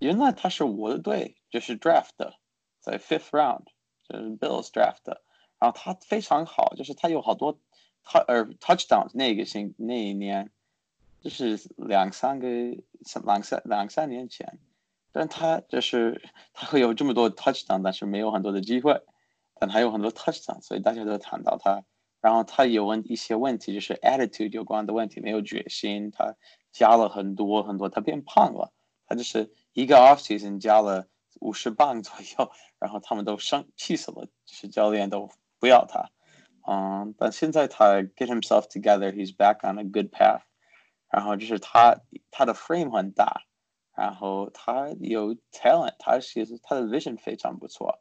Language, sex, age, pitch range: Chinese, male, 20-39, 105-120 Hz